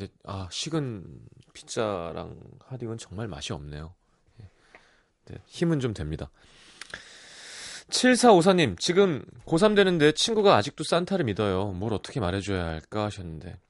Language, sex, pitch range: Korean, male, 90-150 Hz